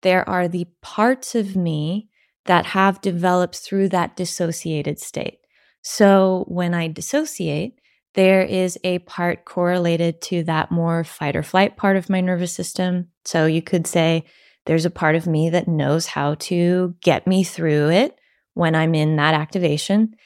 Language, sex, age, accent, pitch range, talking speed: English, female, 20-39, American, 165-185 Hz, 165 wpm